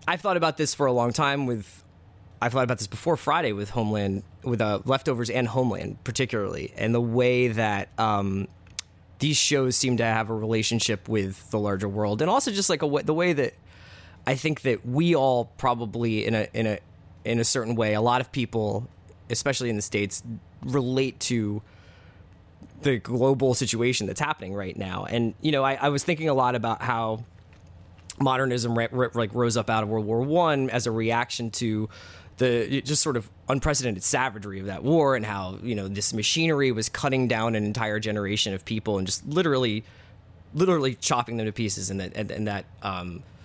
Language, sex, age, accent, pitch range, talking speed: English, male, 20-39, American, 100-130 Hz, 190 wpm